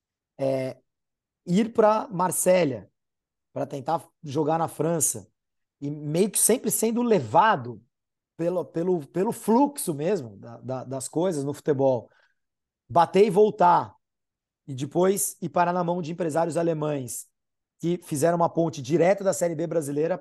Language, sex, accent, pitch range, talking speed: Portuguese, male, Brazilian, 150-210 Hz, 140 wpm